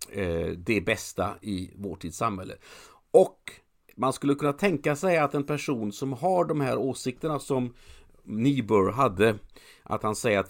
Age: 50-69